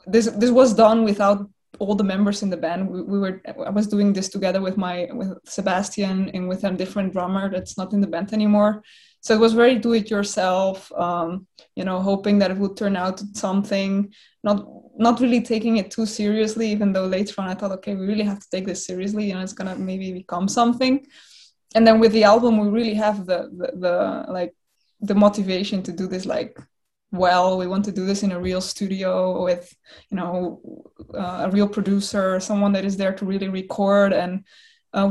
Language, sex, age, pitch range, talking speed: English, female, 20-39, 185-210 Hz, 210 wpm